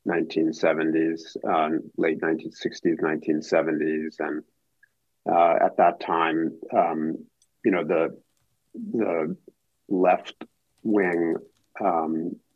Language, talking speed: English, 85 wpm